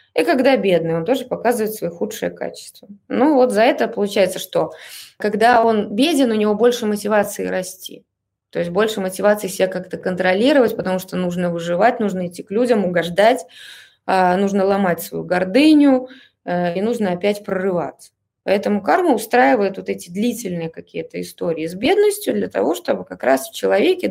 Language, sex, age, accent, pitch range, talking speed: Russian, female, 20-39, native, 175-235 Hz, 160 wpm